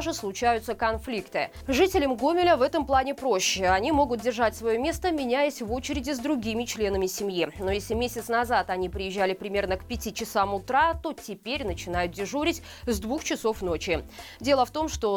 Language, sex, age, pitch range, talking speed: Russian, female, 20-39, 200-275 Hz, 170 wpm